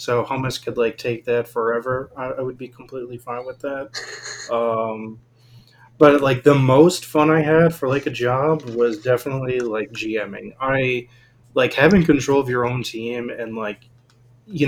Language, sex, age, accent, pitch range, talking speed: English, male, 20-39, American, 115-140 Hz, 170 wpm